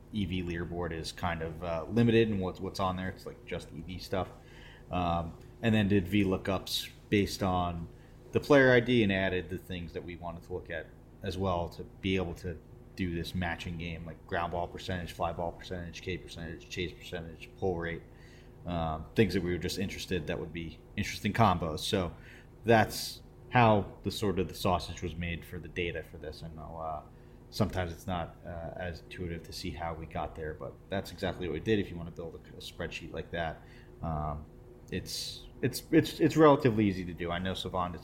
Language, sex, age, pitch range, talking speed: English, male, 30-49, 85-115 Hz, 210 wpm